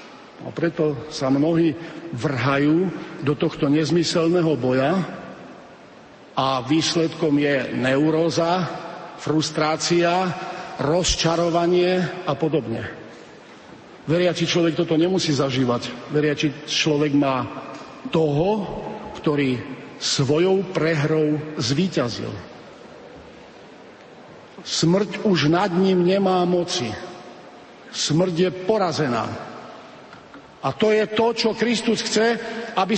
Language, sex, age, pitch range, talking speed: Slovak, male, 50-69, 155-215 Hz, 85 wpm